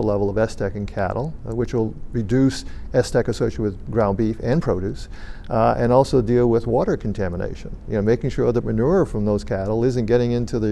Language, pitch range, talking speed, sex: English, 110-140 Hz, 200 wpm, male